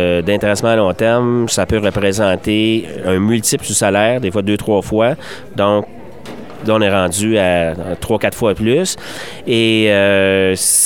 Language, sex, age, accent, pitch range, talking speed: French, male, 30-49, Canadian, 95-115 Hz, 150 wpm